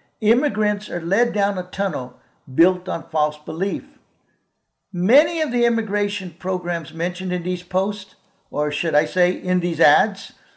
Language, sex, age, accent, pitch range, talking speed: English, male, 60-79, American, 170-225 Hz, 150 wpm